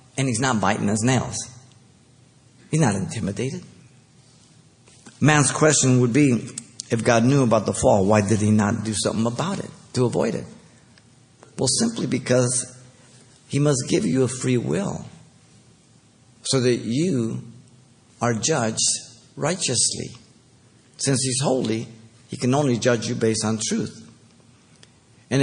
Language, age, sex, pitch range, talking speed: English, 50-69, male, 115-130 Hz, 135 wpm